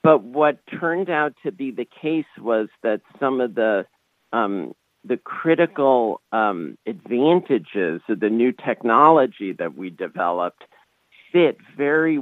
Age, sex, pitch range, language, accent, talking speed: 50-69, male, 105-135 Hz, English, American, 135 wpm